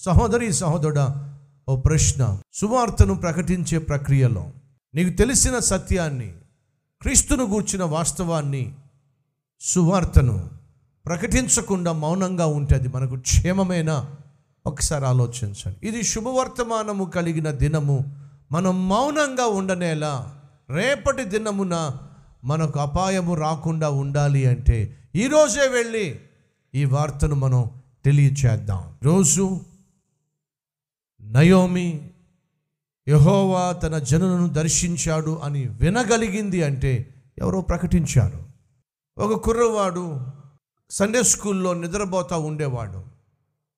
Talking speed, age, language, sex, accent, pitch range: 80 wpm, 50-69, Telugu, male, native, 140-190 Hz